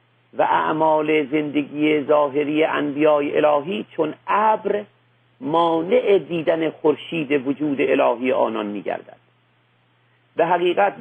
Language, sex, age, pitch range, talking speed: Persian, male, 50-69, 105-170 Hz, 95 wpm